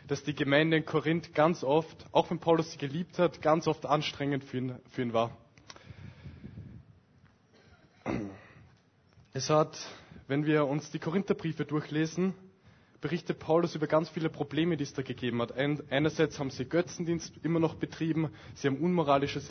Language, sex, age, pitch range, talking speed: German, male, 20-39, 140-170 Hz, 155 wpm